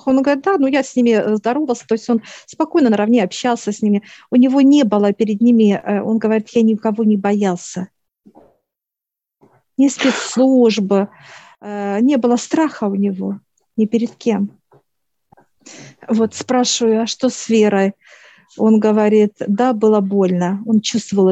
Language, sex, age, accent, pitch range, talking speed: Russian, female, 50-69, native, 200-225 Hz, 150 wpm